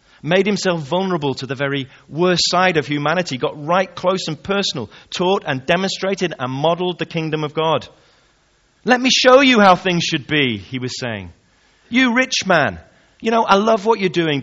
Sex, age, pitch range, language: male, 30-49, 135-175 Hz, English